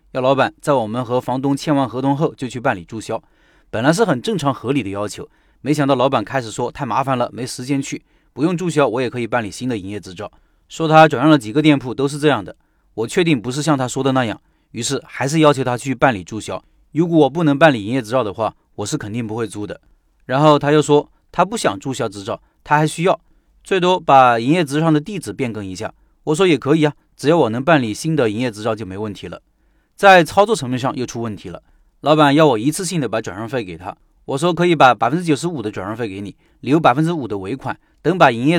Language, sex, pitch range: Chinese, male, 115-155 Hz